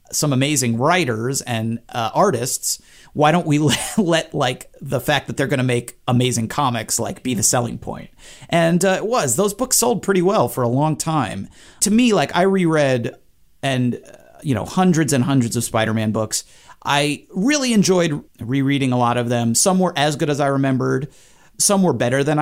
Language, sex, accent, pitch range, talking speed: English, male, American, 120-155 Hz, 190 wpm